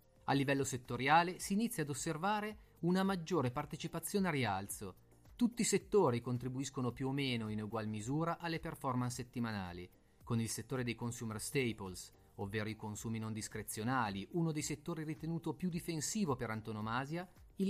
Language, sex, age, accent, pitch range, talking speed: Italian, male, 30-49, native, 110-160 Hz, 155 wpm